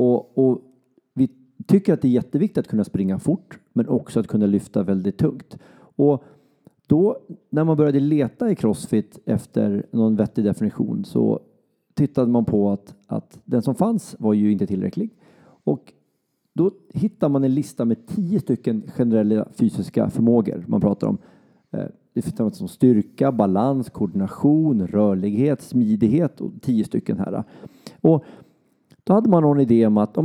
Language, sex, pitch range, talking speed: Swedish, male, 110-165 Hz, 165 wpm